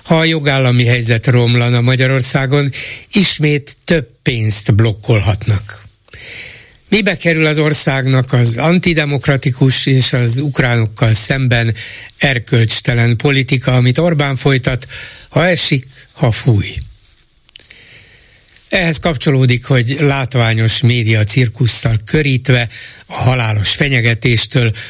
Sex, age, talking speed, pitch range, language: male, 60-79, 95 wpm, 110-135 Hz, Hungarian